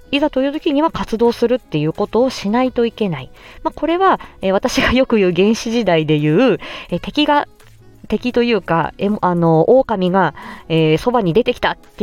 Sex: female